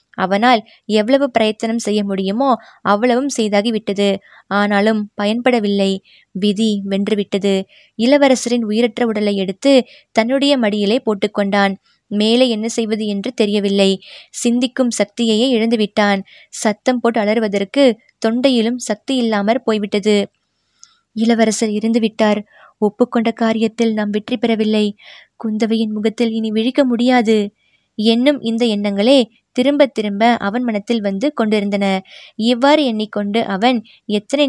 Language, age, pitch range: Tamil, 20-39, 205-245 Hz